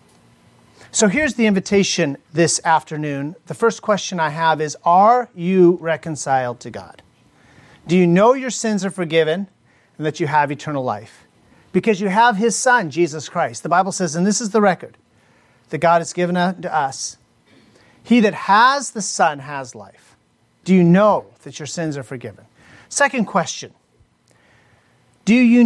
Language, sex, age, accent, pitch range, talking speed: English, male, 40-59, American, 145-205 Hz, 165 wpm